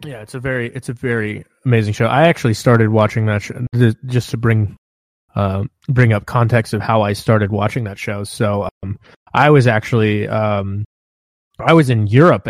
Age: 20-39